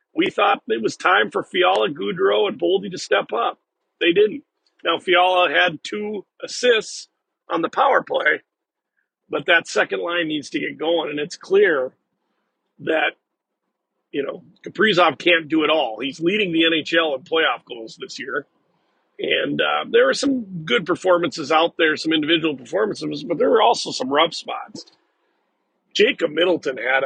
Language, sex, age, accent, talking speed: English, male, 40-59, American, 165 wpm